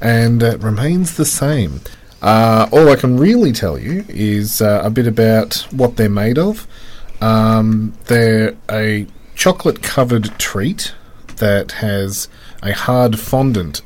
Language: English